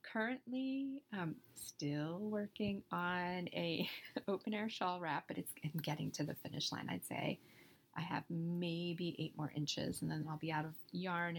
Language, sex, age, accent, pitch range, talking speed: English, female, 30-49, American, 160-200 Hz, 170 wpm